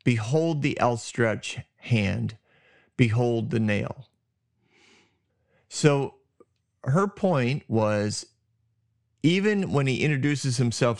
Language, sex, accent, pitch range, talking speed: English, male, American, 110-135 Hz, 85 wpm